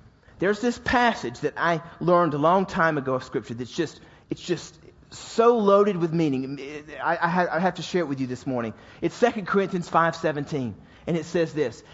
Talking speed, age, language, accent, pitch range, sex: 200 wpm, 30-49, English, American, 150-225 Hz, male